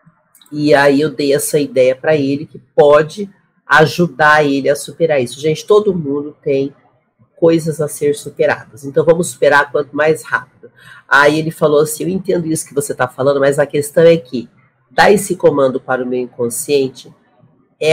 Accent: Brazilian